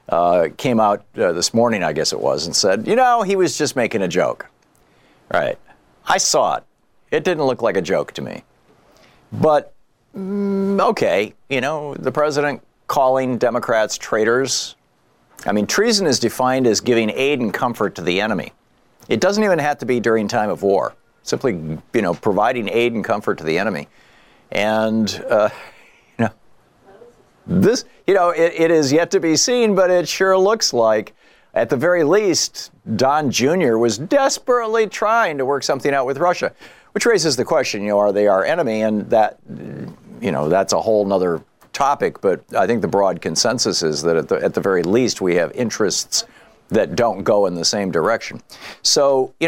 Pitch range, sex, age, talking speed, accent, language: 115-195 Hz, male, 50-69, 180 wpm, American, English